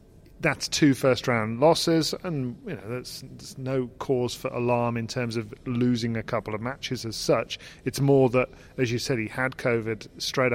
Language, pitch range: English, 120-135 Hz